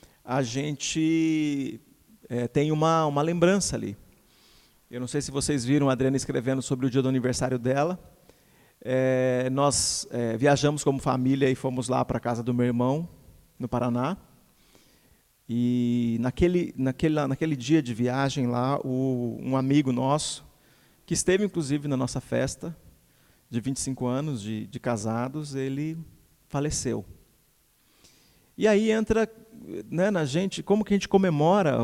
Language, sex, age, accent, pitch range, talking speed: Portuguese, male, 40-59, Brazilian, 125-165 Hz, 140 wpm